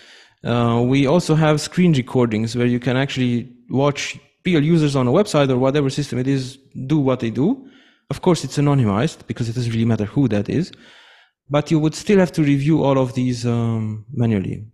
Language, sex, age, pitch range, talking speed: English, male, 30-49, 125-155 Hz, 200 wpm